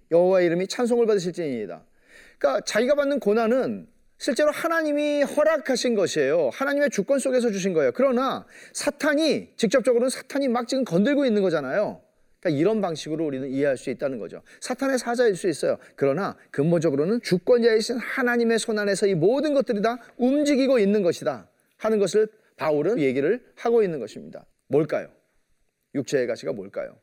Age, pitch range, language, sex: 40-59, 190-255 Hz, Korean, male